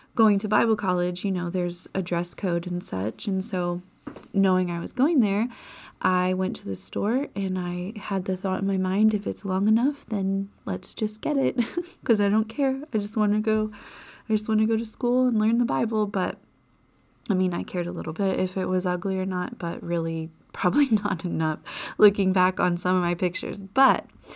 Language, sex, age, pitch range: English, female, 20-39, 180-220 Hz